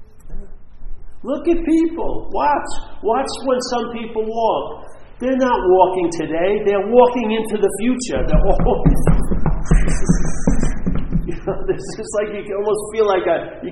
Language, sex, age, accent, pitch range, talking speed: English, male, 50-69, American, 170-250 Hz, 135 wpm